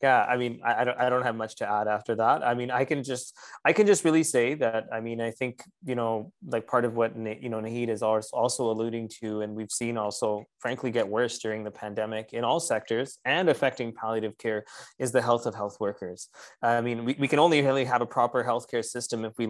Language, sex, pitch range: English, male, 110-135 Hz